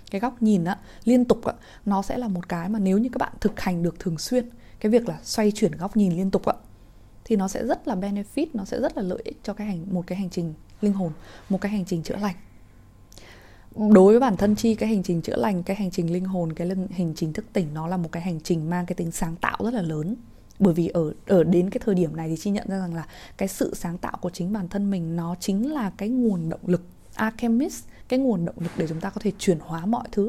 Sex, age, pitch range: female, 20-39, 170-210 Hz